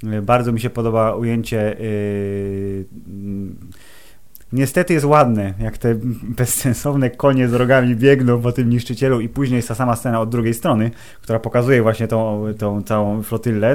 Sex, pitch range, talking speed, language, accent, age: male, 110-125 Hz, 160 wpm, Polish, native, 20-39